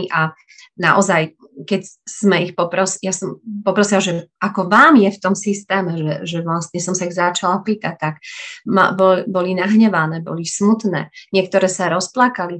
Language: Slovak